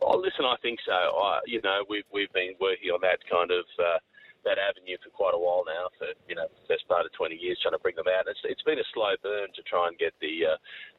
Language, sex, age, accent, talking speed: English, male, 30-49, Australian, 275 wpm